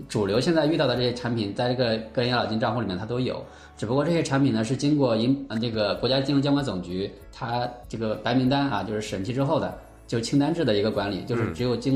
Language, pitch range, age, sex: Chinese, 105-130 Hz, 20-39, male